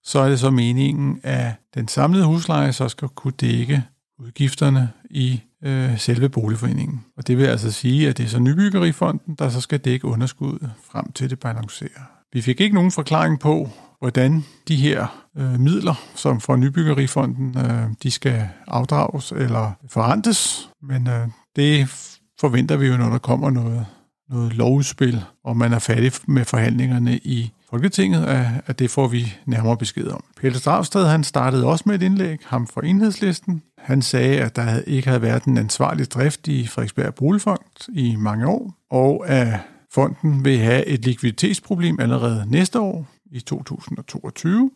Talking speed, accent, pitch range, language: 165 wpm, native, 120-150 Hz, Danish